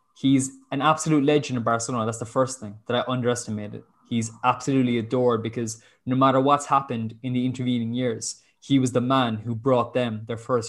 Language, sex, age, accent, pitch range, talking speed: English, male, 20-39, Irish, 115-125 Hz, 190 wpm